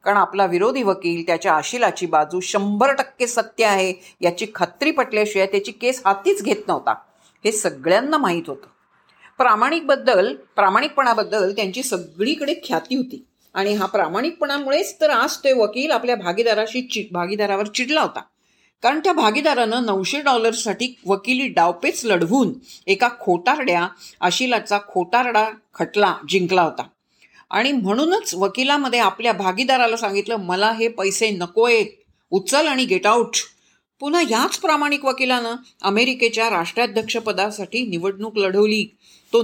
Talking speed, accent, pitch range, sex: 125 wpm, native, 195-265 Hz, female